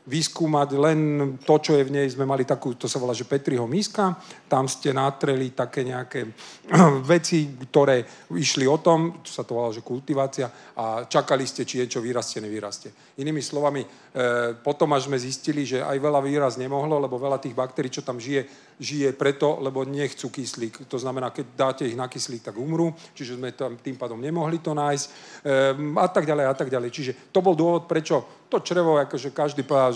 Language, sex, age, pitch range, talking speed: Czech, male, 40-59, 130-150 Hz, 190 wpm